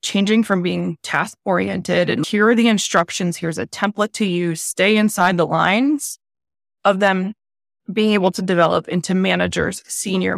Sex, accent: female, American